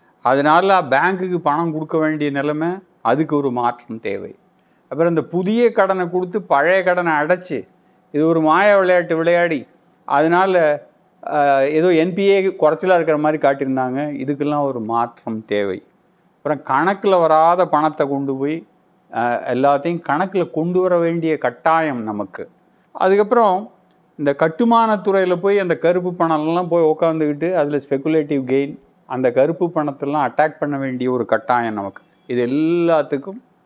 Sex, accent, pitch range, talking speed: male, native, 140-180 Hz, 125 wpm